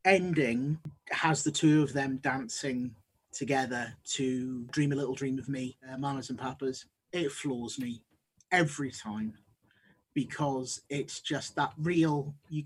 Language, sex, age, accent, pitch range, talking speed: English, male, 30-49, British, 125-155 Hz, 140 wpm